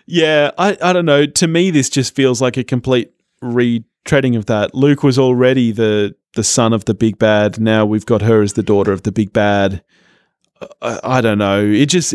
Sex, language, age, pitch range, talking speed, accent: male, English, 30-49, 110-165 Hz, 210 wpm, Australian